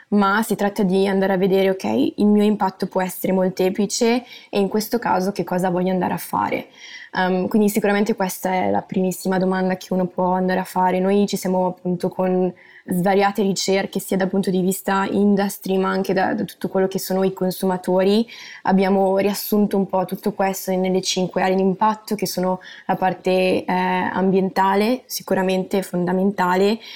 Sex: female